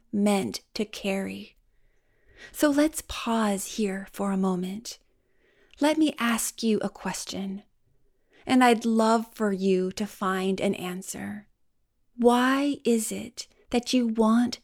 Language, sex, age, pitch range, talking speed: English, female, 30-49, 200-240 Hz, 125 wpm